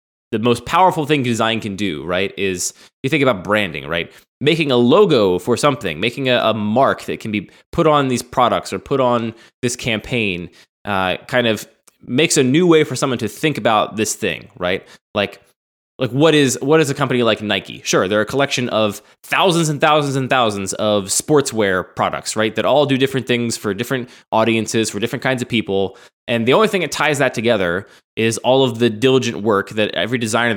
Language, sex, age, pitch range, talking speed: English, male, 20-39, 105-135 Hz, 205 wpm